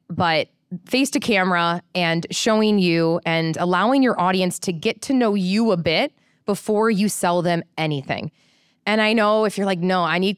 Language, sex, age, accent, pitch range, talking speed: English, female, 20-39, American, 165-205 Hz, 185 wpm